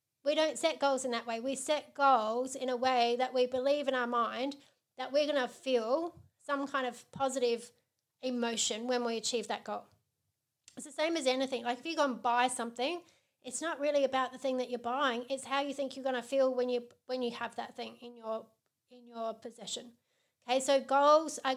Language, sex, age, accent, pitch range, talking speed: English, female, 30-49, Australian, 245-280 Hz, 220 wpm